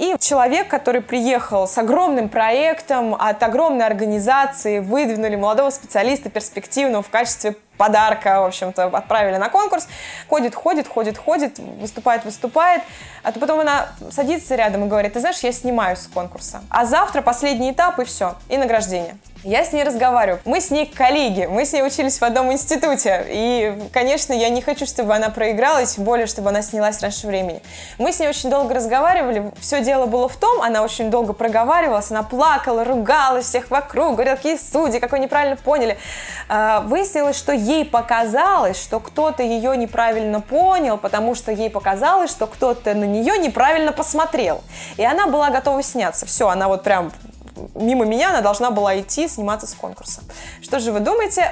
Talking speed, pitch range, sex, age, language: 170 wpm, 215-285 Hz, female, 20-39, Russian